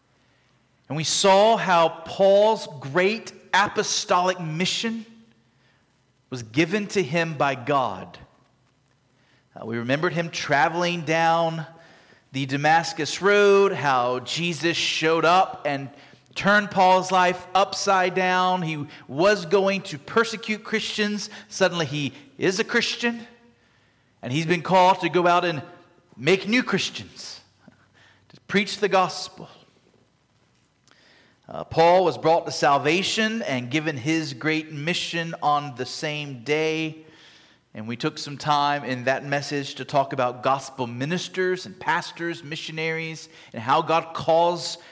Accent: American